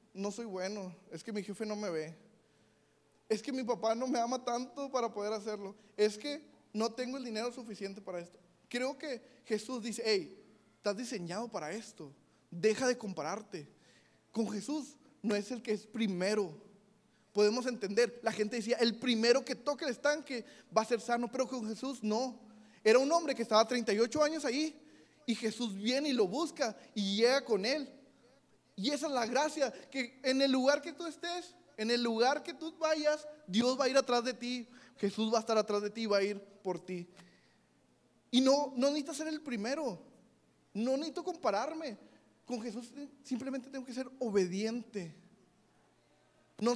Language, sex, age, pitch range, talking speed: Spanish, male, 20-39, 210-270 Hz, 180 wpm